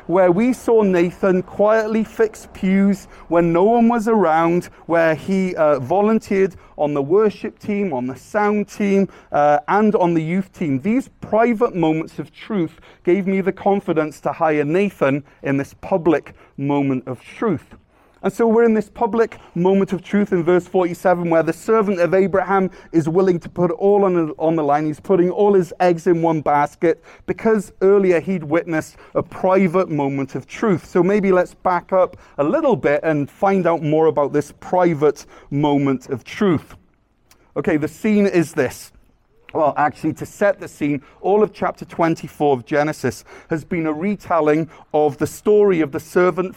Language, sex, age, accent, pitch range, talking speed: English, male, 30-49, British, 155-200 Hz, 175 wpm